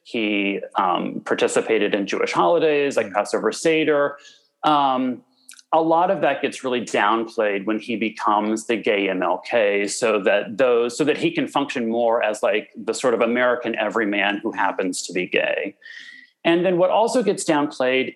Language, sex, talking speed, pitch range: English, male, 165 wpm, 120-170 Hz